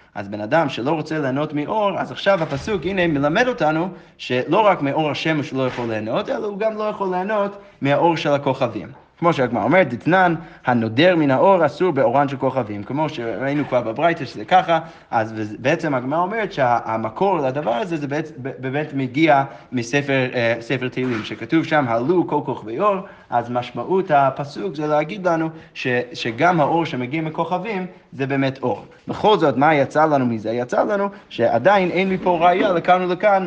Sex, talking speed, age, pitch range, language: male, 165 wpm, 30-49, 125-170 Hz, Hebrew